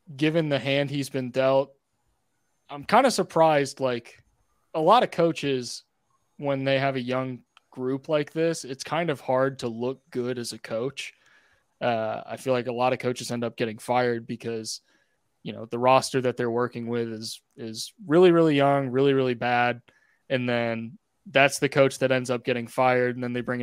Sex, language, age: male, English, 20-39